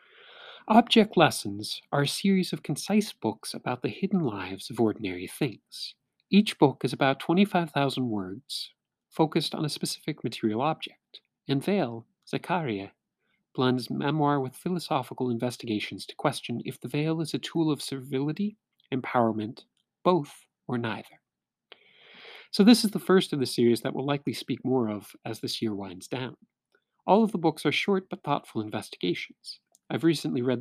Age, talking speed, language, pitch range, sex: 40-59, 155 wpm, English, 125-170 Hz, male